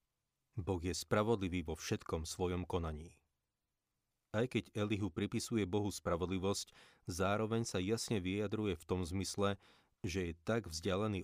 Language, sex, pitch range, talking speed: Slovak, male, 85-100 Hz, 130 wpm